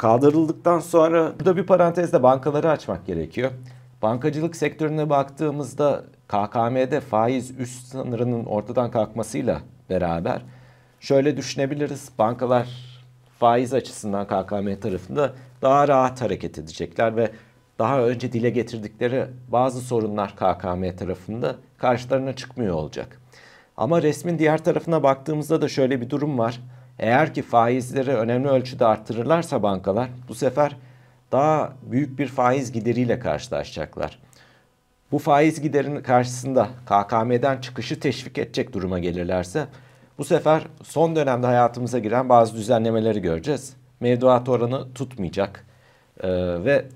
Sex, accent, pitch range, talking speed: male, native, 115-145 Hz, 115 wpm